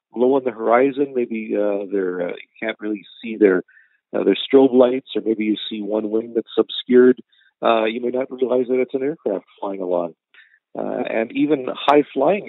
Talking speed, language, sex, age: 190 wpm, English, male, 50-69